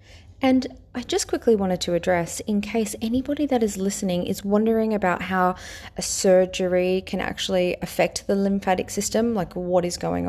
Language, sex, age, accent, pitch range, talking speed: English, female, 20-39, Australian, 175-225 Hz, 170 wpm